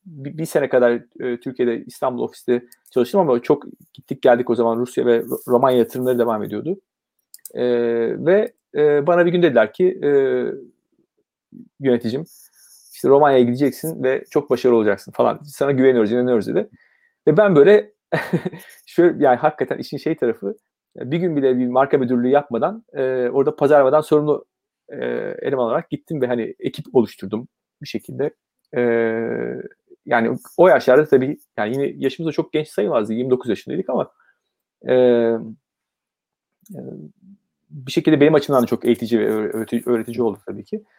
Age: 40-59